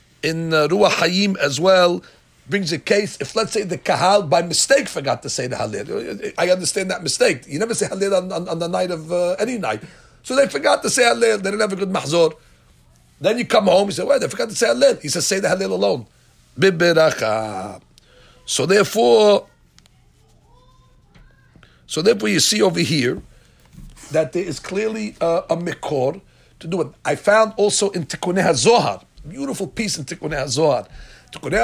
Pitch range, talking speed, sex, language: 165-210 Hz, 190 wpm, male, English